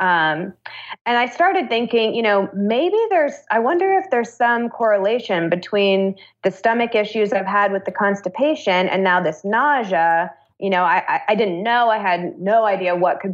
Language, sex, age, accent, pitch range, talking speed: English, female, 20-39, American, 180-220 Hz, 180 wpm